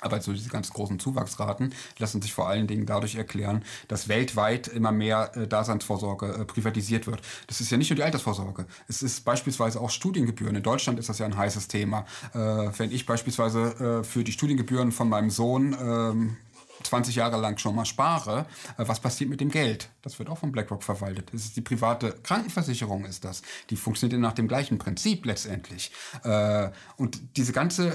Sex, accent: male, German